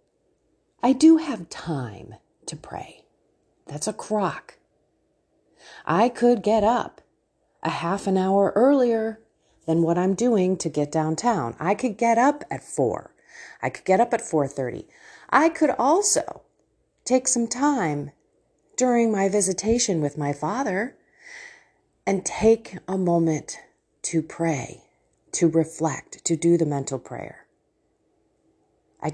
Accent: American